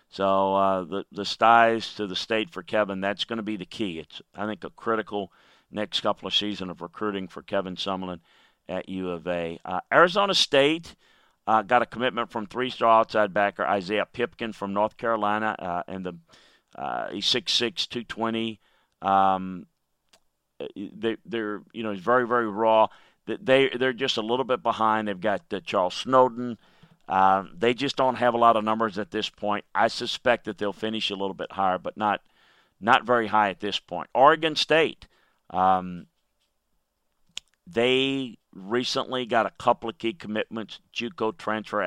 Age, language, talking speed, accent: 50-69, English, 175 wpm, American